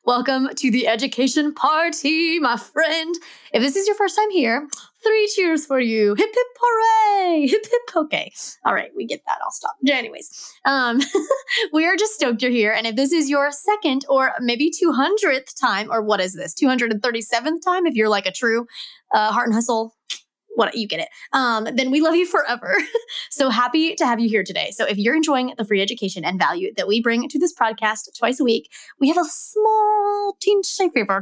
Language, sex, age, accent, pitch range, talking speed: English, female, 20-39, American, 225-320 Hz, 200 wpm